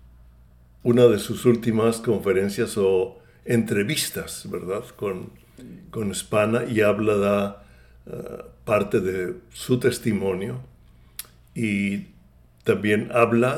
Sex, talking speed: male, 95 wpm